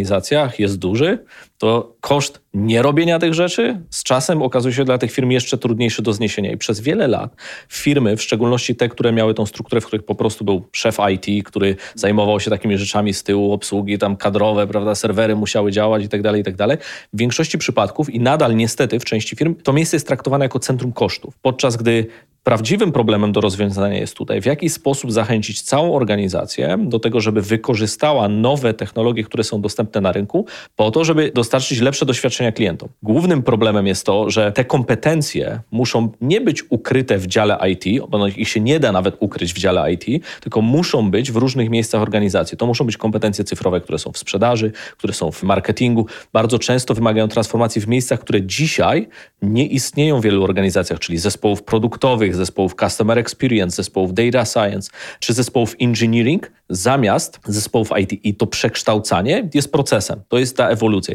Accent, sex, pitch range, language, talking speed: native, male, 105-130 Hz, Polish, 185 wpm